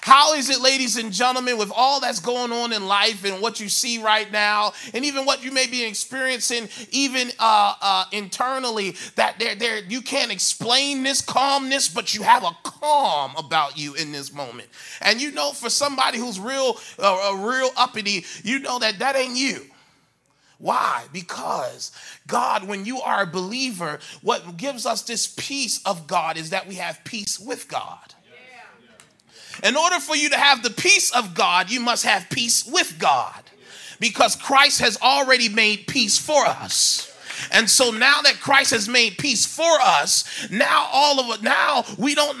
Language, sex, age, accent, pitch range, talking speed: English, male, 30-49, American, 210-275 Hz, 180 wpm